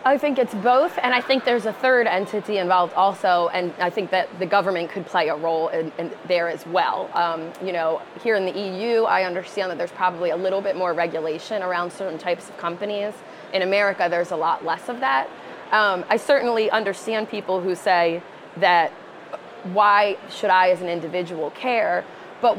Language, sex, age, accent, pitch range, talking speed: Polish, female, 20-39, American, 175-215 Hz, 195 wpm